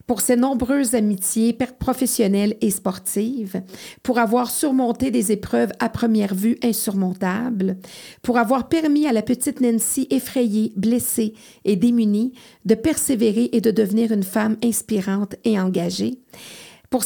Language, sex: French, female